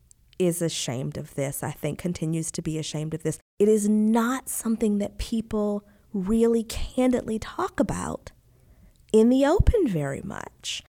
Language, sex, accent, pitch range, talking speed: English, female, American, 180-235 Hz, 150 wpm